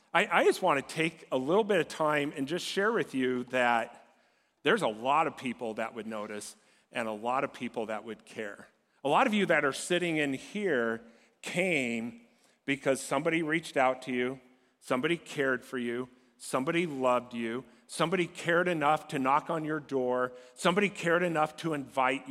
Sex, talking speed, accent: male, 185 wpm, American